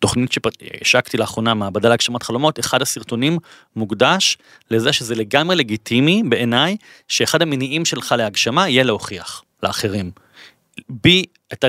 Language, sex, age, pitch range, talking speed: Hebrew, male, 30-49, 110-140 Hz, 125 wpm